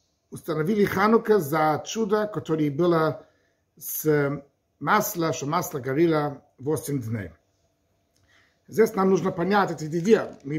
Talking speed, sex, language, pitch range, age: 100 wpm, male, Russian, 120-175 Hz, 50-69